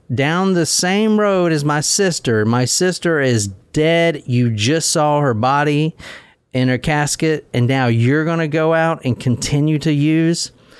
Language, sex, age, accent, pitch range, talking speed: English, male, 40-59, American, 125-160 Hz, 165 wpm